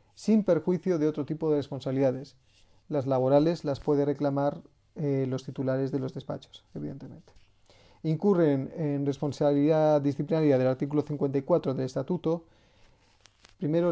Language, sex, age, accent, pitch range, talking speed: Spanish, male, 40-59, Spanish, 135-160 Hz, 125 wpm